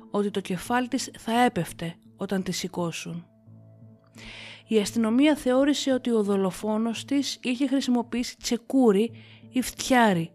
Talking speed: 120 wpm